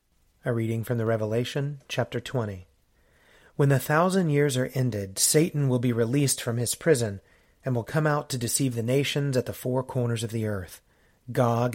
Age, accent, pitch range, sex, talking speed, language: 40-59, American, 115-140 Hz, male, 185 wpm, English